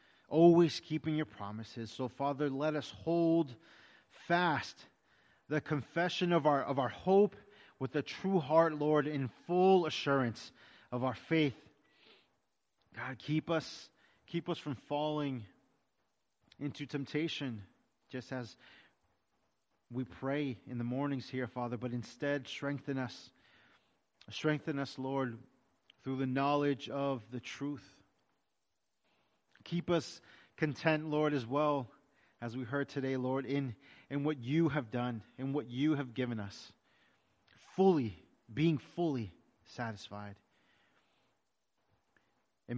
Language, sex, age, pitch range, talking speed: English, male, 30-49, 115-150 Hz, 120 wpm